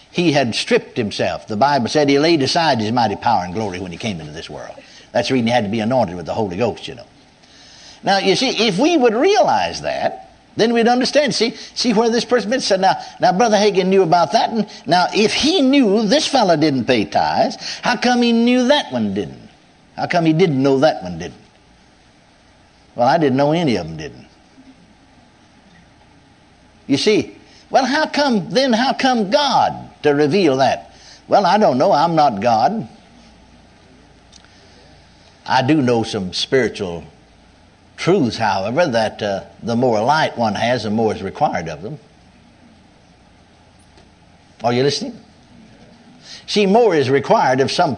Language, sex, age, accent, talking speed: English, male, 60-79, American, 175 wpm